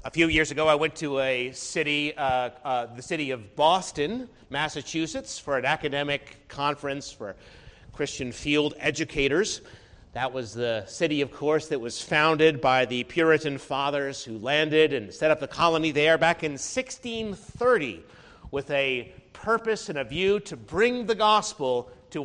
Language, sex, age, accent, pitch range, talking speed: English, male, 40-59, American, 130-165 Hz, 160 wpm